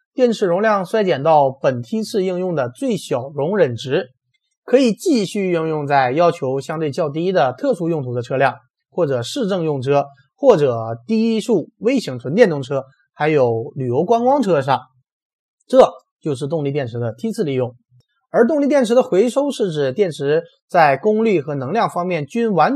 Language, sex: Chinese, male